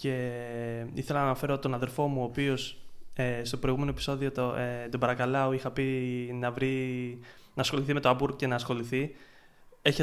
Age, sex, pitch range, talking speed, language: 20-39, male, 130-150 Hz, 180 wpm, Greek